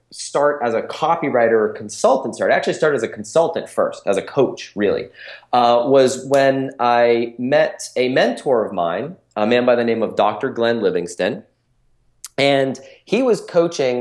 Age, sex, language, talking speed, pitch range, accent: 30-49, male, English, 170 wpm, 110-145 Hz, American